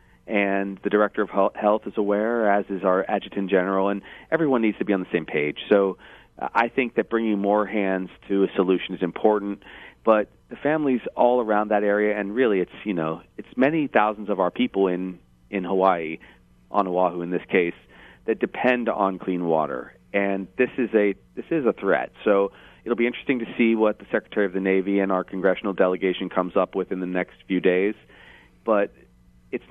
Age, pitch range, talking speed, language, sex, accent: 40-59, 90-105 Hz, 200 wpm, English, male, American